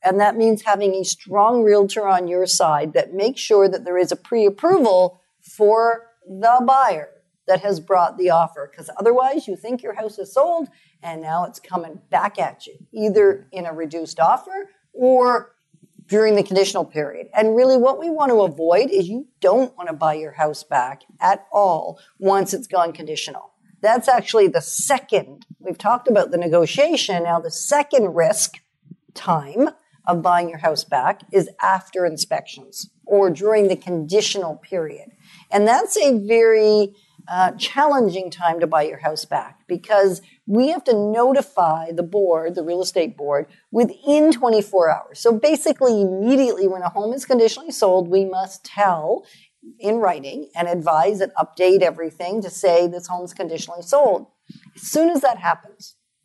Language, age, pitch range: English, 50-69, 175-235 Hz